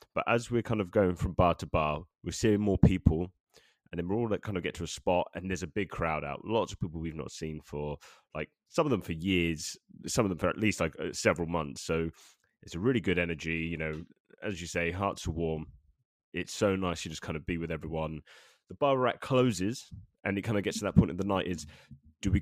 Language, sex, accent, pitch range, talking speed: English, male, British, 80-100 Hz, 255 wpm